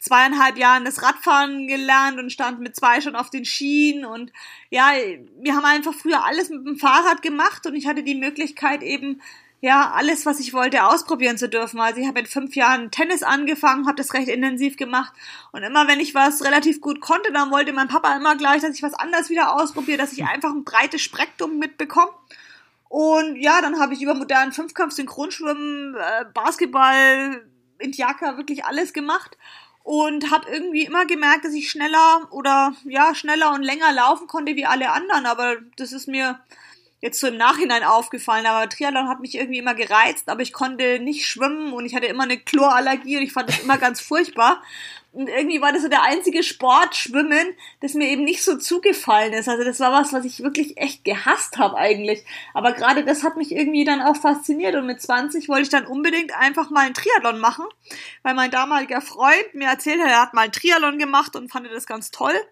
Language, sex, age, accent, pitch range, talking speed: English, female, 30-49, German, 260-310 Hz, 200 wpm